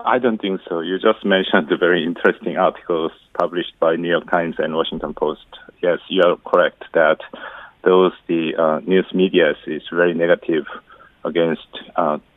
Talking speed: 165 wpm